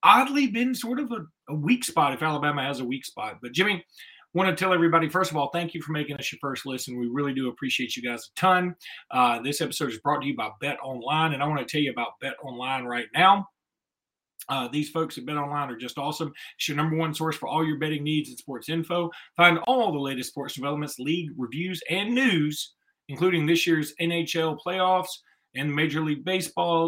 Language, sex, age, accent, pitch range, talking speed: English, male, 30-49, American, 145-175 Hz, 230 wpm